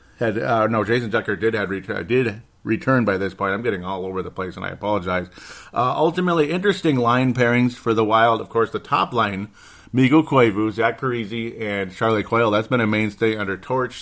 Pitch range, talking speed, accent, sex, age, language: 100-120 Hz, 205 wpm, American, male, 40-59, English